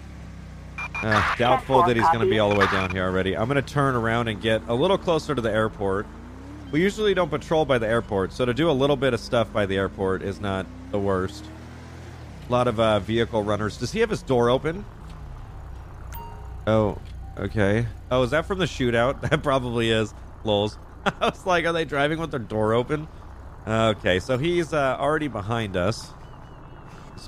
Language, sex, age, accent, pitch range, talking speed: English, male, 30-49, American, 95-130 Hz, 200 wpm